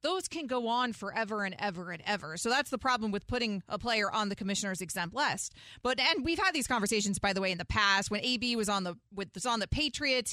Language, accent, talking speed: English, American, 255 wpm